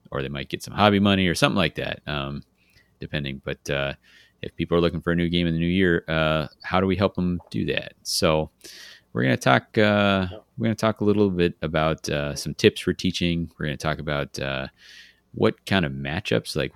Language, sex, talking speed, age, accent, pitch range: English, male, 235 wpm, 30-49, American, 70-85 Hz